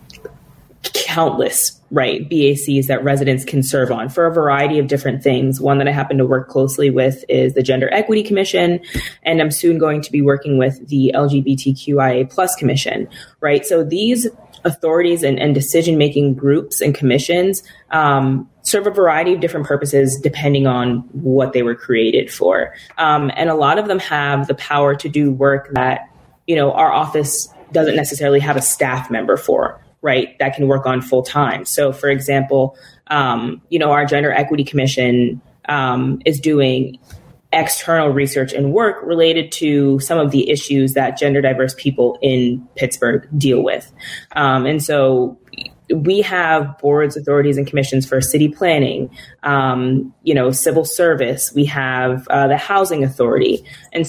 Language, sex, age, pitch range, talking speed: English, female, 20-39, 135-160 Hz, 165 wpm